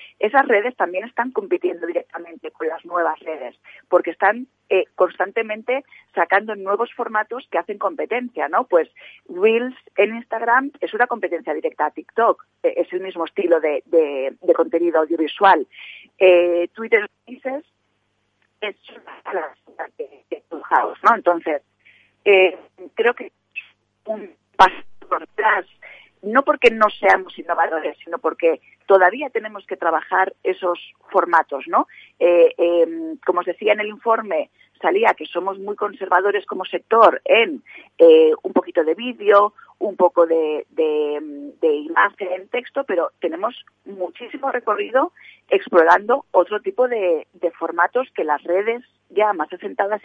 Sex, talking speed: female, 140 wpm